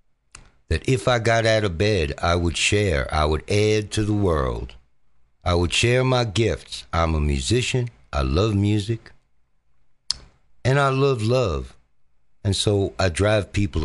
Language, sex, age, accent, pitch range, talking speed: English, male, 60-79, American, 80-130 Hz, 155 wpm